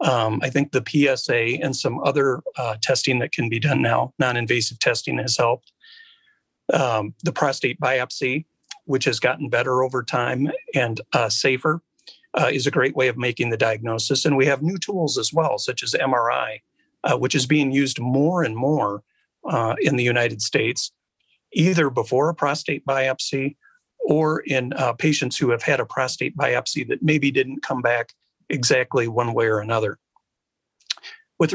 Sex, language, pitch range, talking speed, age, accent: male, English, 125-155 Hz, 170 wpm, 50-69, American